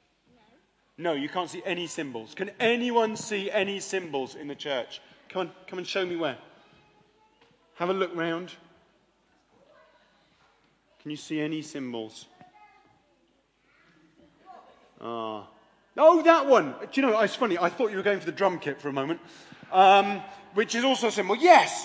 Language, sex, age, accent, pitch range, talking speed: English, male, 40-59, British, 190-270 Hz, 160 wpm